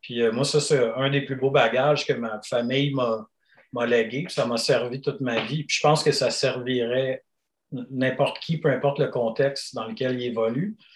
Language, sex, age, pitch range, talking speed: French, male, 50-69, 130-150 Hz, 215 wpm